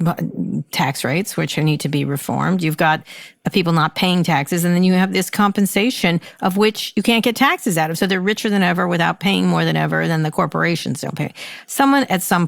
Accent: American